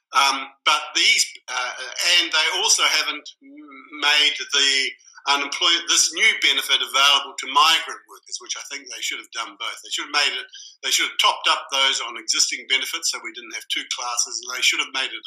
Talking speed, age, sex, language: 210 wpm, 50-69, male, English